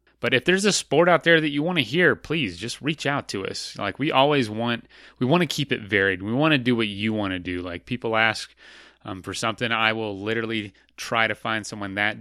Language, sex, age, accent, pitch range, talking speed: English, male, 30-49, American, 95-120 Hz, 250 wpm